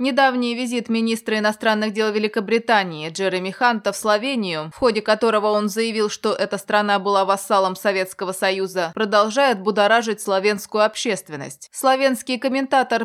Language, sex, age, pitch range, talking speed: Russian, female, 20-39, 200-245 Hz, 130 wpm